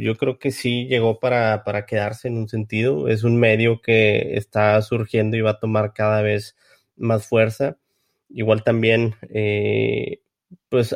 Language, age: Spanish, 20-39